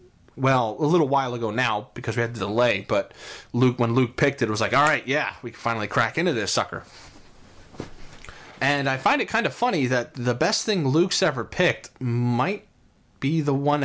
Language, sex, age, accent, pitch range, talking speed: English, male, 30-49, American, 115-145 Hz, 210 wpm